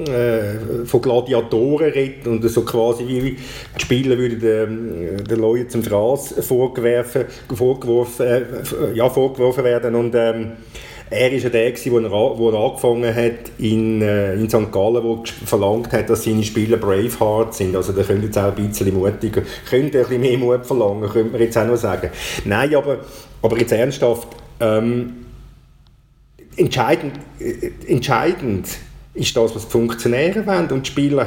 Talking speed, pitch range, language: 165 wpm, 110-120 Hz, German